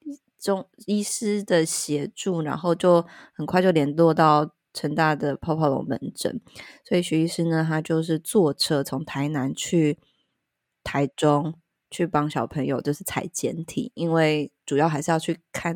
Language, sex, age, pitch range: Chinese, female, 20-39, 145-175 Hz